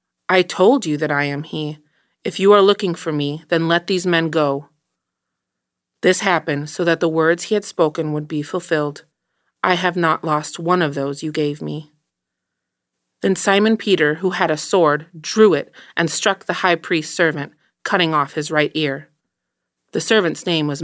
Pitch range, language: 150-180 Hz, English